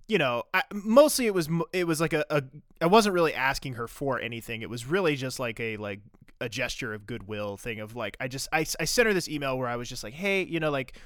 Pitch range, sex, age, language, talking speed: 120-155 Hz, male, 20-39, English, 265 wpm